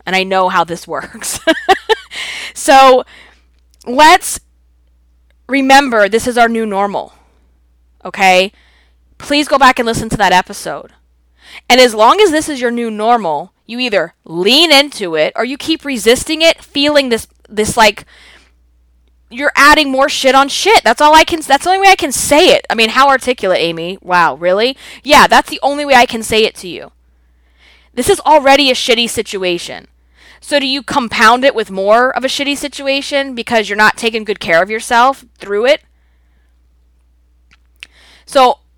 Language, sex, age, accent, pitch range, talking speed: English, female, 20-39, American, 155-255 Hz, 170 wpm